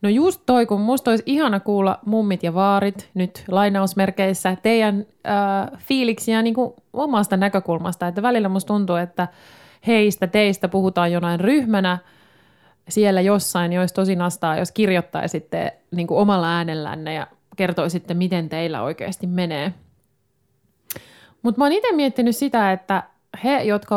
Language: Finnish